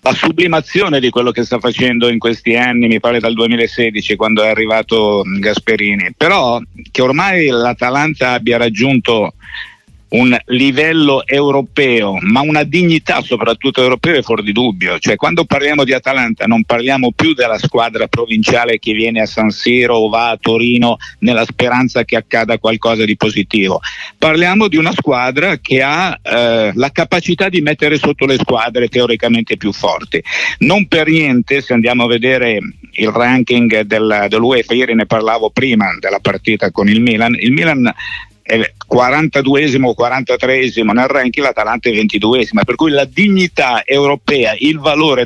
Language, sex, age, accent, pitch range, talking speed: Italian, male, 50-69, native, 115-145 Hz, 155 wpm